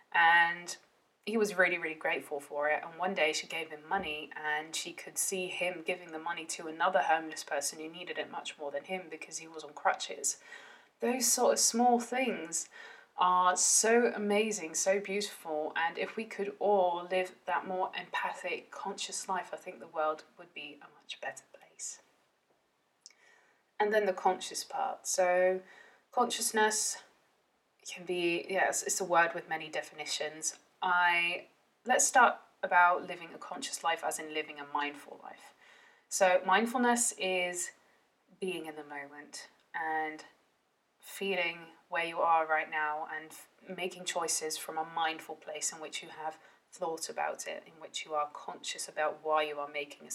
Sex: female